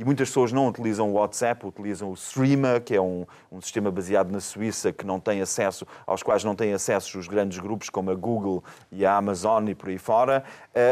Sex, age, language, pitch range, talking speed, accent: male, 30-49, Portuguese, 125-180 Hz, 220 wpm, Portuguese